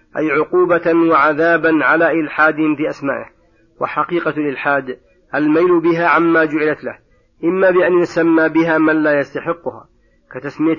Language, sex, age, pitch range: Arabic, male, 40-59, 145-165 Hz